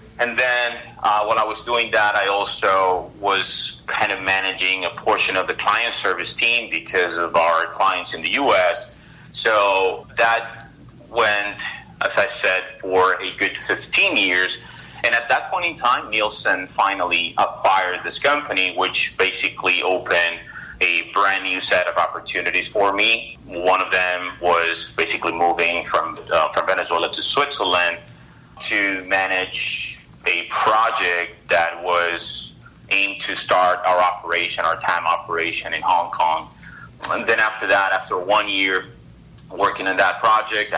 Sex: male